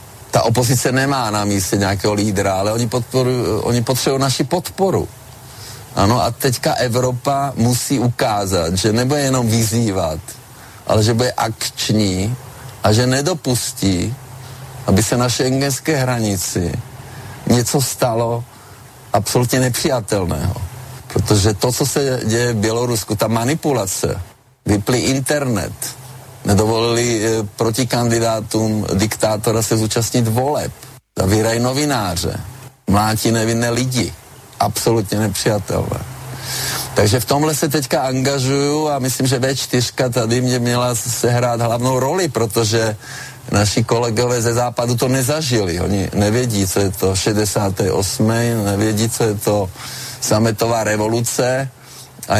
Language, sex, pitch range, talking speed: Slovak, male, 110-130 Hz, 115 wpm